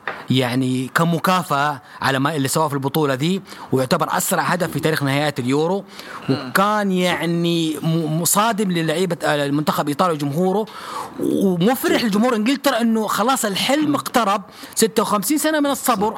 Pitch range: 155-200 Hz